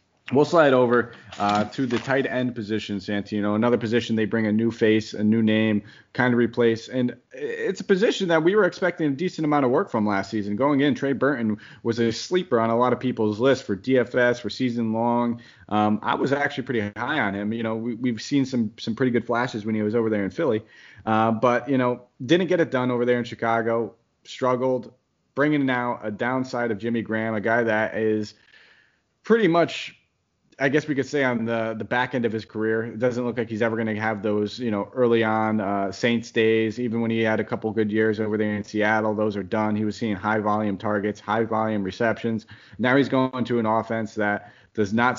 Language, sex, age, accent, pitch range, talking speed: English, male, 30-49, American, 110-125 Hz, 225 wpm